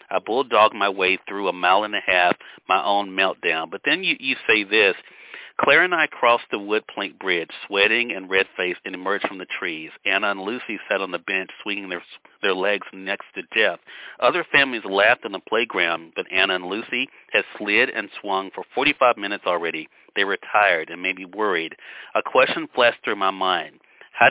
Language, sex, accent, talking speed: English, male, American, 195 wpm